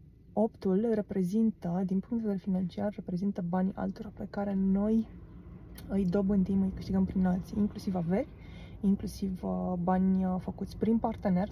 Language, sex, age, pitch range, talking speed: Romanian, female, 20-39, 180-205 Hz, 135 wpm